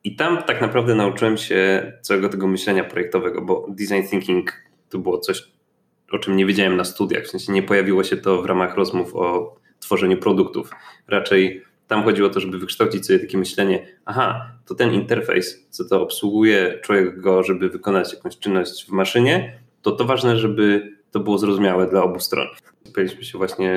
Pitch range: 95-110 Hz